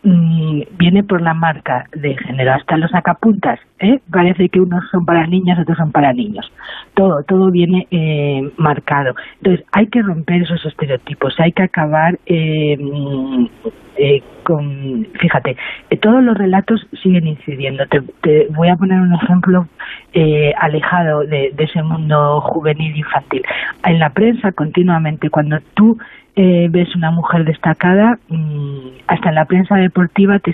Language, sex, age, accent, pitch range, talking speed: Spanish, female, 40-59, Spanish, 150-190 Hz, 155 wpm